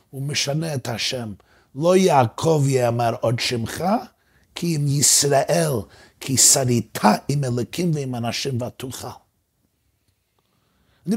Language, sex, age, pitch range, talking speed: Hebrew, male, 50-69, 125-200 Hz, 105 wpm